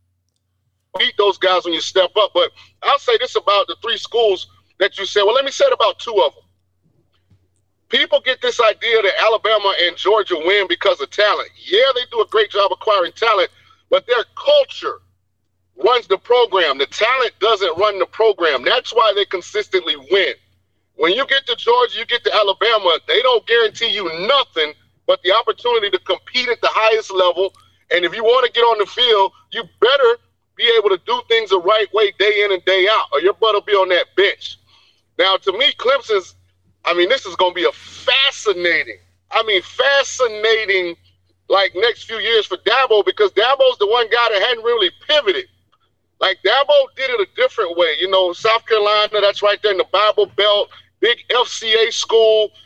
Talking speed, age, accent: 190 wpm, 40-59, American